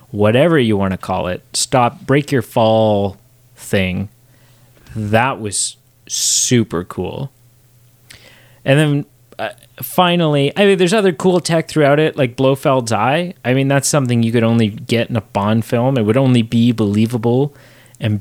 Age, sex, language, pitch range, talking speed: 30-49, male, English, 115-130 Hz, 160 wpm